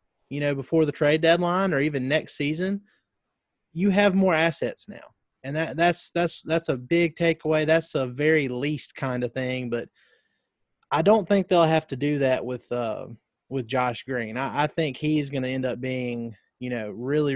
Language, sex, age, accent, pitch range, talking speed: English, male, 20-39, American, 125-155 Hz, 190 wpm